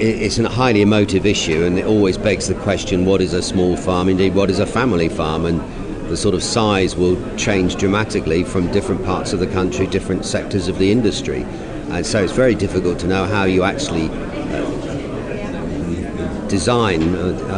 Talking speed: 180 wpm